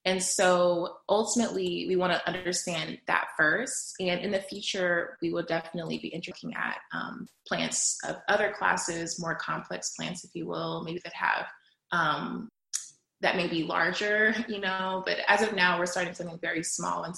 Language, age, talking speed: English, 20-39, 175 wpm